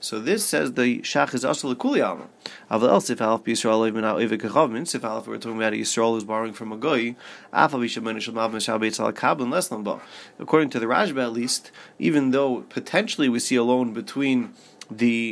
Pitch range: 115-130 Hz